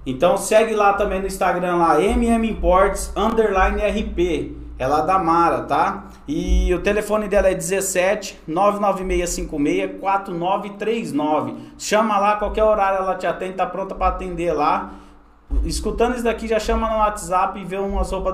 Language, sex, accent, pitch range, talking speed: Portuguese, male, Brazilian, 155-200 Hz, 140 wpm